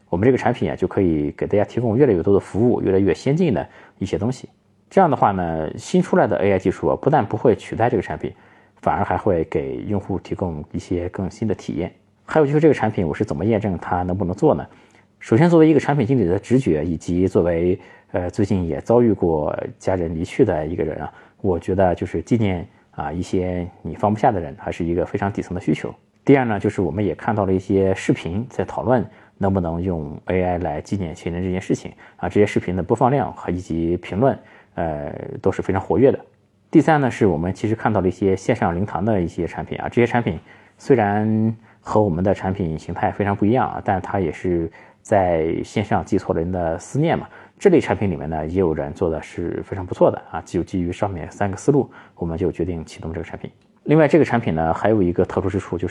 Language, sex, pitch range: Chinese, male, 85-105 Hz